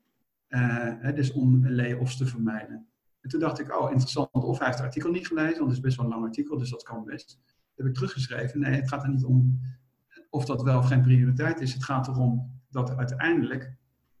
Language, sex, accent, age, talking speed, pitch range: Dutch, male, Dutch, 50-69, 230 wpm, 130-150 Hz